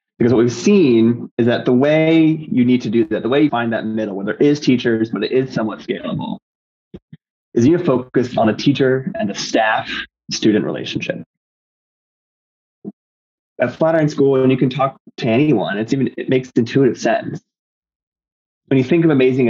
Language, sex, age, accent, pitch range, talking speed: English, male, 20-39, American, 105-135 Hz, 180 wpm